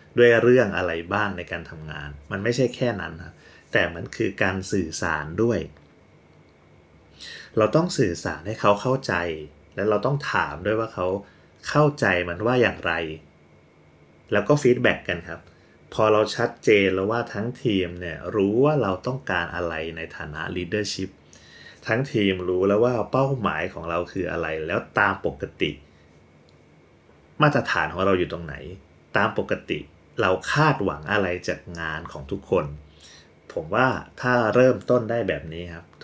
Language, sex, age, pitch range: Thai, male, 30-49, 80-110 Hz